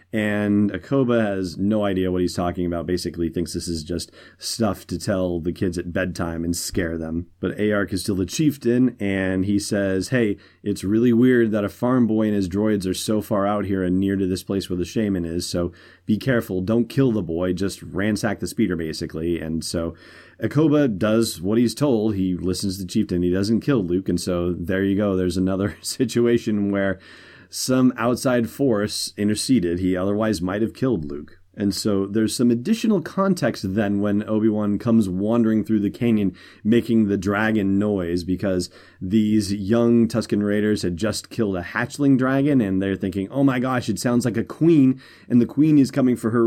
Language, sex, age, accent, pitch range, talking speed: English, male, 30-49, American, 95-120 Hz, 195 wpm